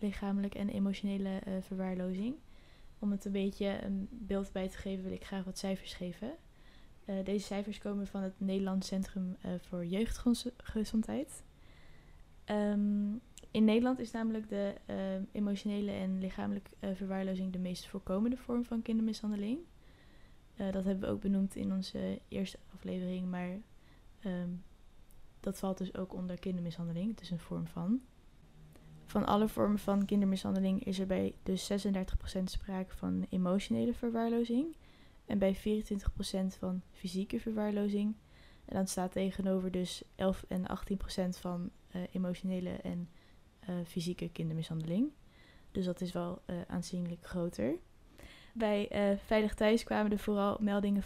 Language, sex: Dutch, female